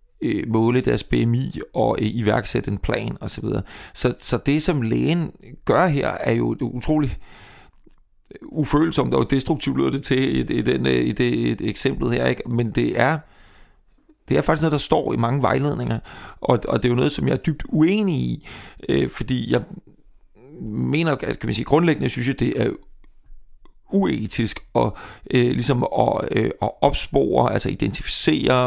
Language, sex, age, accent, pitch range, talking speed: Danish, male, 30-49, native, 110-140 Hz, 165 wpm